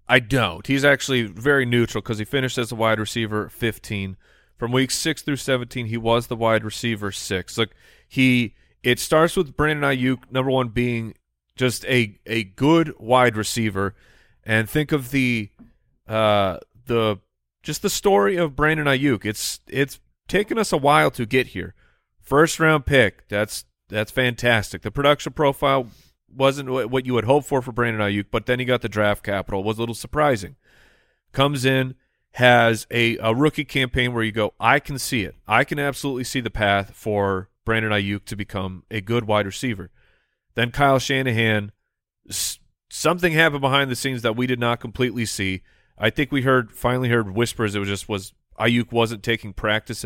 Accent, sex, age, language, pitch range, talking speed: American, male, 30-49, English, 105-130 Hz, 180 wpm